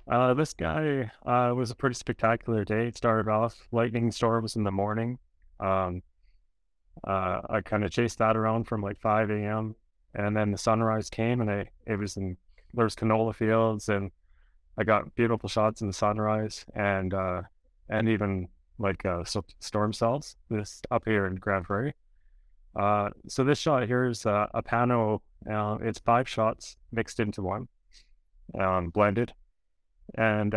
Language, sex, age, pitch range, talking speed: English, male, 20-39, 95-115 Hz, 160 wpm